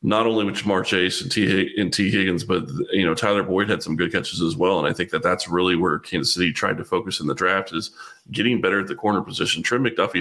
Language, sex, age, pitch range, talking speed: English, male, 30-49, 90-105 Hz, 255 wpm